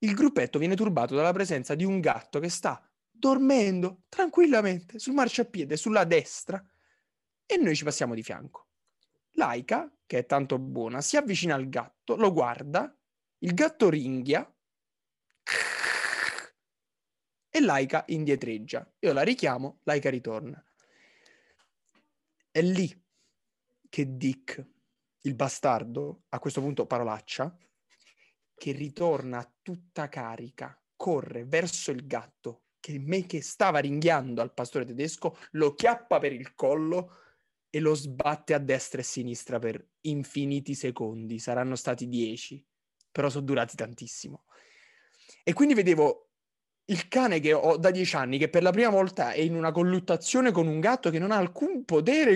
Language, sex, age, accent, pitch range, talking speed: Italian, male, 20-39, native, 140-200 Hz, 140 wpm